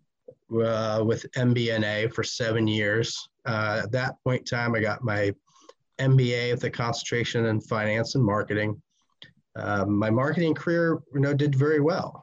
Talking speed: 150 wpm